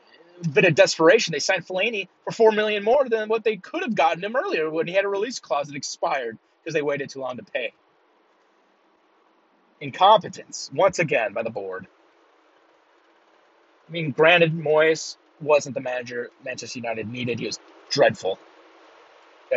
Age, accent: 30-49, American